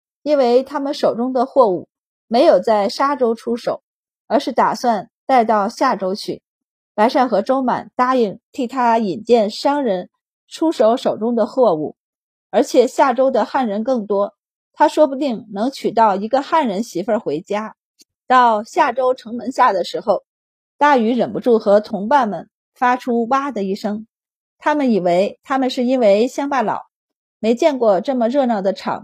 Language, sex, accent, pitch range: Chinese, female, native, 210-265 Hz